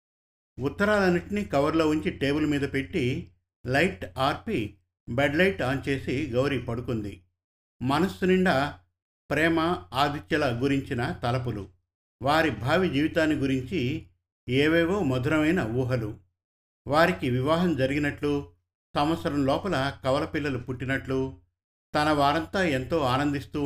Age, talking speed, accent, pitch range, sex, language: 50-69, 95 wpm, native, 105-150 Hz, male, Telugu